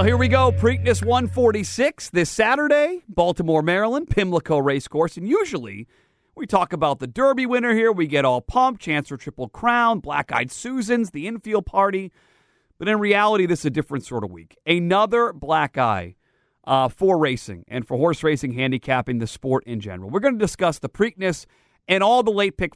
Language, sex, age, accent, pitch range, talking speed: English, male, 40-59, American, 125-180 Hz, 185 wpm